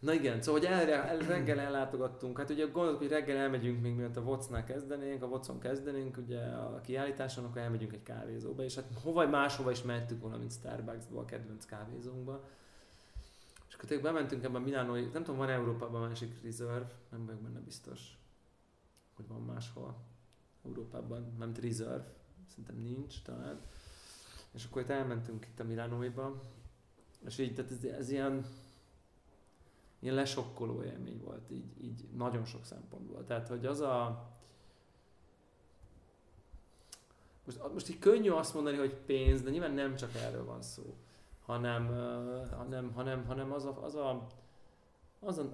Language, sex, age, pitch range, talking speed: Hungarian, male, 20-39, 115-135 Hz, 155 wpm